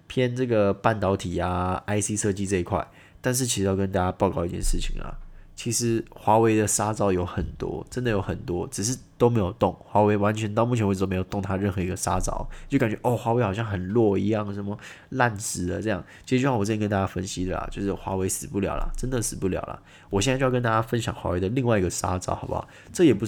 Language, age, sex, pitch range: Chinese, 20-39, male, 95-115 Hz